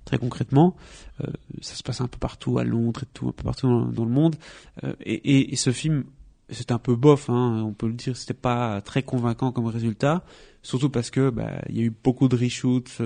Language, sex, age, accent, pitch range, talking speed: French, male, 30-49, French, 120-145 Hz, 235 wpm